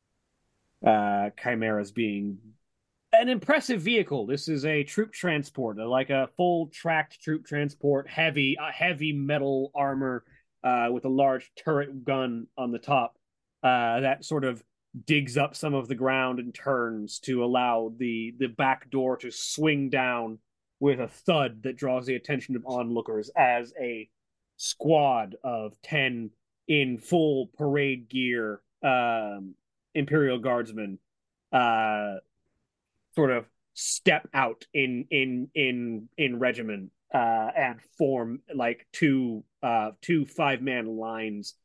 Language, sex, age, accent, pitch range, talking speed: English, male, 30-49, American, 115-145 Hz, 135 wpm